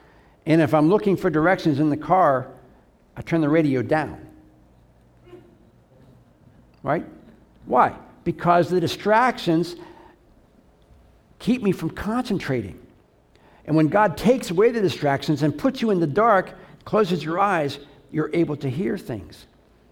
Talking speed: 135 wpm